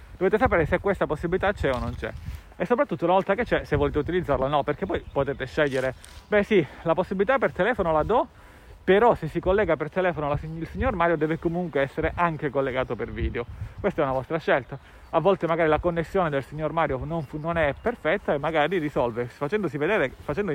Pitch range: 135-180 Hz